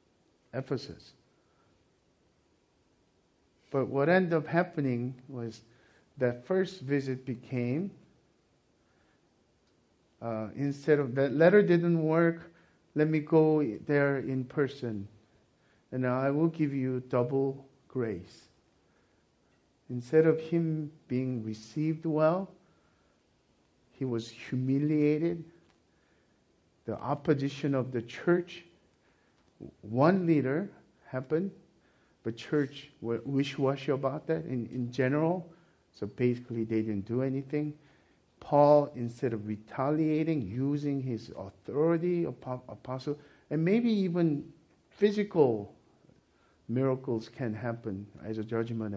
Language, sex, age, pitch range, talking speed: English, male, 50-69, 115-155 Hz, 100 wpm